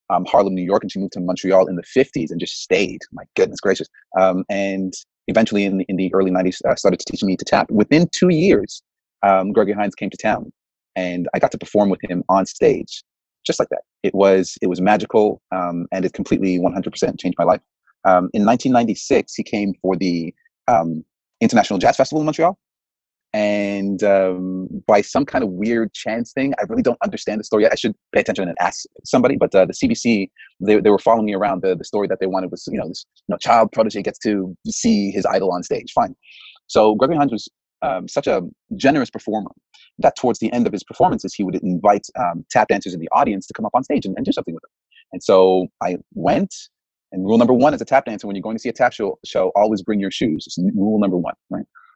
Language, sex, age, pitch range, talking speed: English, male, 30-49, 95-115 Hz, 230 wpm